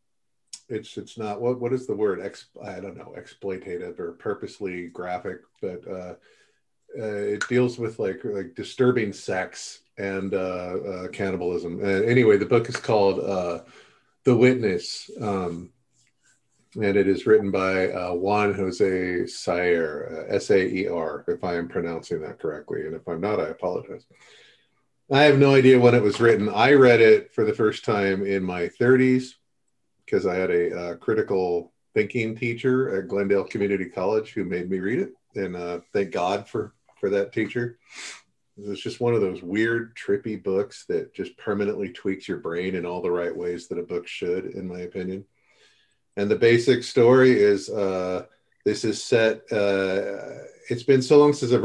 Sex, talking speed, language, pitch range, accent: male, 175 wpm, English, 95-135 Hz, American